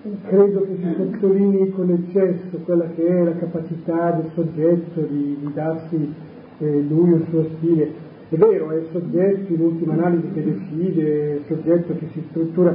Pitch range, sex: 160-195 Hz, male